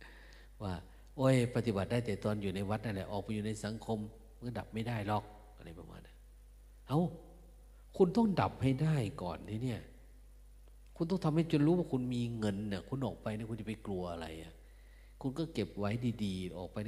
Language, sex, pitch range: Thai, male, 85-125 Hz